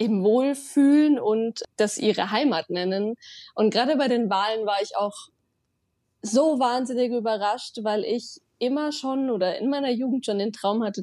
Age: 20-39